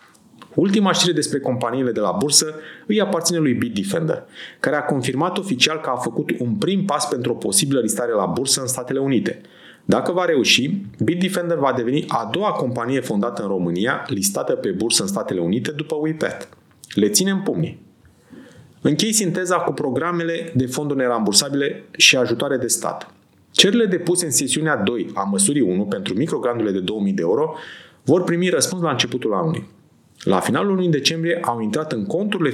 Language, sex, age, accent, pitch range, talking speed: Romanian, male, 30-49, native, 125-175 Hz, 170 wpm